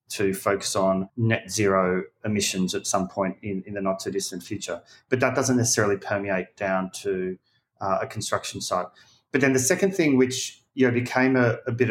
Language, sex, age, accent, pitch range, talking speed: English, male, 30-49, Australian, 95-120 Hz, 175 wpm